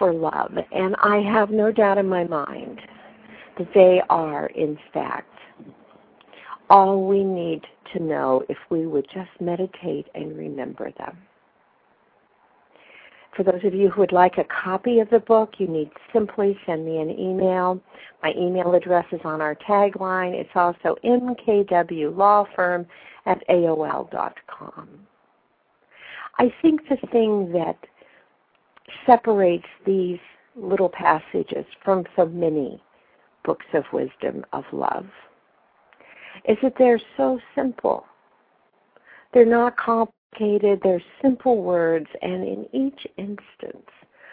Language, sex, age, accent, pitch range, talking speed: English, female, 50-69, American, 175-230 Hz, 125 wpm